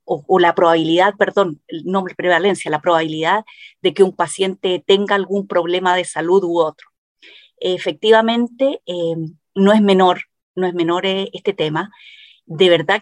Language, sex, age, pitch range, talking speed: Spanish, female, 40-59, 175-215 Hz, 150 wpm